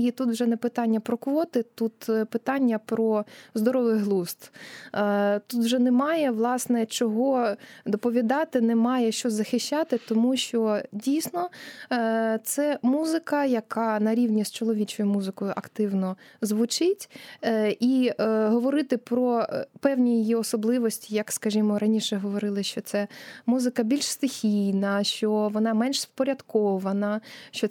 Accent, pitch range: native, 215-260 Hz